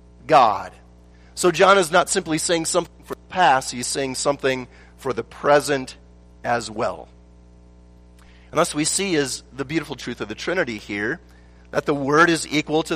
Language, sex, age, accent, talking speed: English, male, 40-59, American, 170 wpm